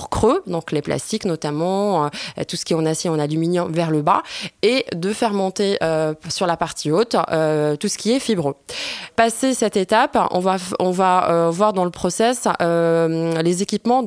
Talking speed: 200 wpm